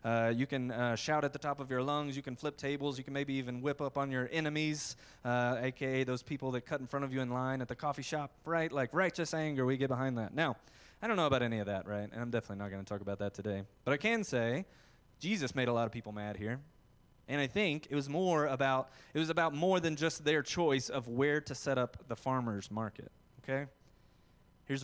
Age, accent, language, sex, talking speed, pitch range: 20-39, American, English, male, 250 wpm, 115-145 Hz